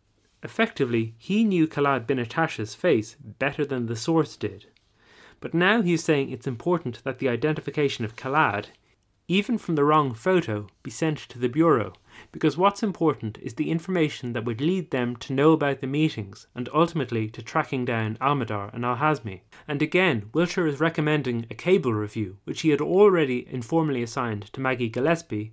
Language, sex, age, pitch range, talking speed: English, male, 30-49, 115-155 Hz, 170 wpm